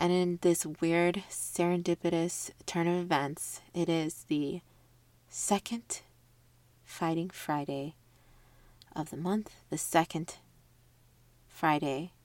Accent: American